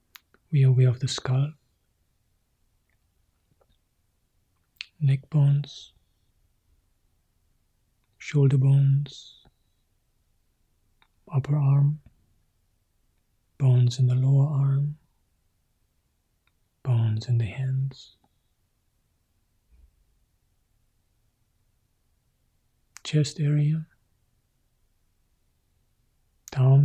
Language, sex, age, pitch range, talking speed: English, male, 40-59, 90-135 Hz, 50 wpm